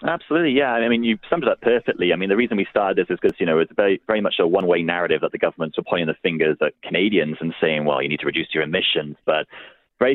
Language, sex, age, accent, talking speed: English, male, 30-49, British, 285 wpm